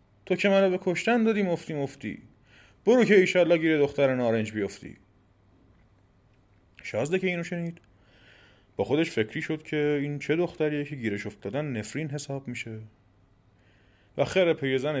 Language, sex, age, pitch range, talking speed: Persian, male, 30-49, 105-155 Hz, 140 wpm